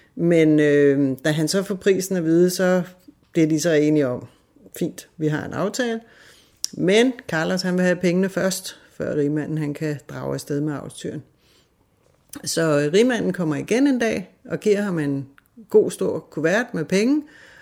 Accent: native